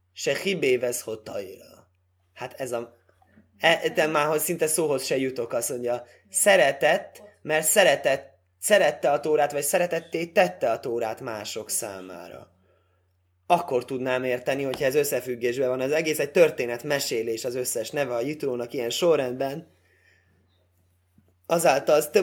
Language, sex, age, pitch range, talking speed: Hungarian, male, 20-39, 115-150 Hz, 130 wpm